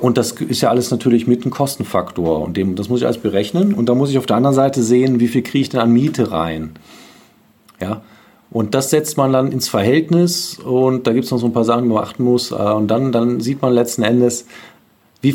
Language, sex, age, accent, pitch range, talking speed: German, male, 40-59, German, 110-135 Hz, 240 wpm